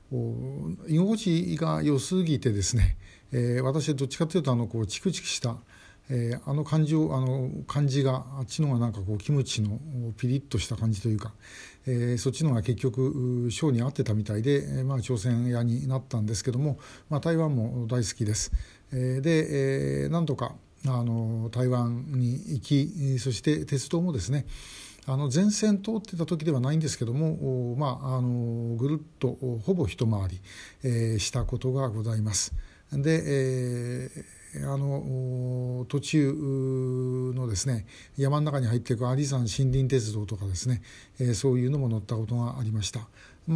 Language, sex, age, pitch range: Japanese, male, 60-79, 115-140 Hz